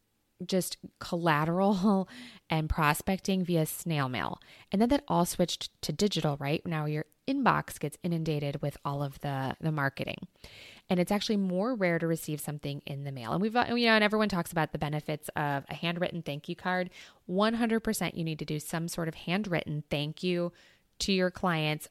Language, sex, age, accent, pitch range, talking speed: English, female, 20-39, American, 155-190 Hz, 190 wpm